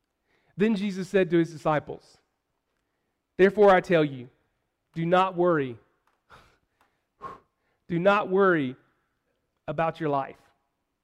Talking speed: 105 wpm